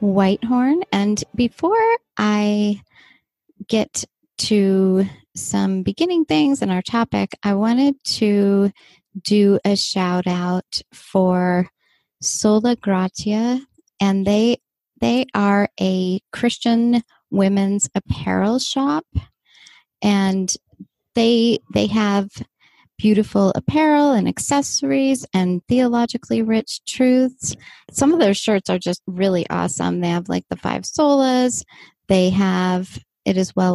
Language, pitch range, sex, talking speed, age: English, 185-240 Hz, female, 110 wpm, 30-49